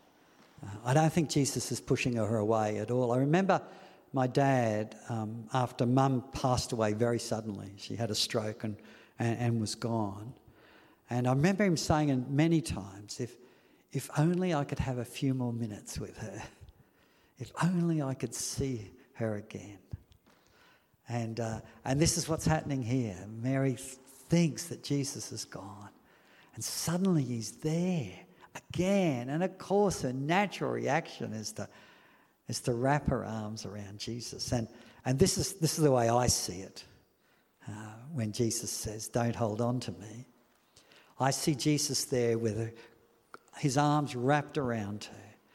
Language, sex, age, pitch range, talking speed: English, male, 50-69, 115-145 Hz, 160 wpm